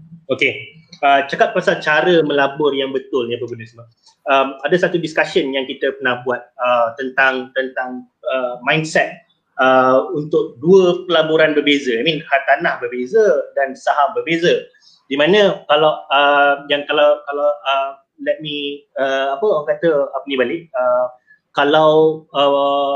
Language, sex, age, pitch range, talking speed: Malay, male, 30-49, 140-195 Hz, 150 wpm